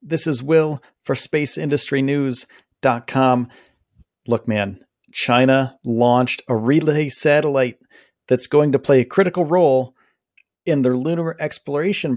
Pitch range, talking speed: 120-150 Hz, 115 wpm